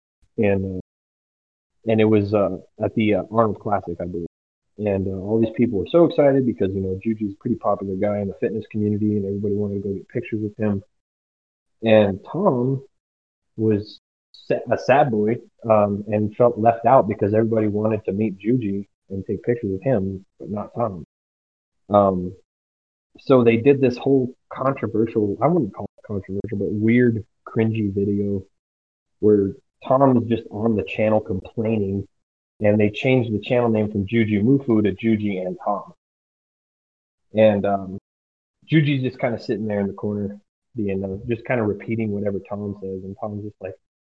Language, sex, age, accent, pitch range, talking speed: English, male, 30-49, American, 95-120 Hz, 170 wpm